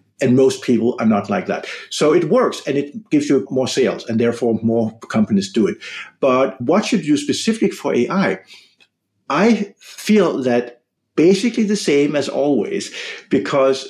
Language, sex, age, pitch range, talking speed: English, male, 50-69, 130-180 Hz, 165 wpm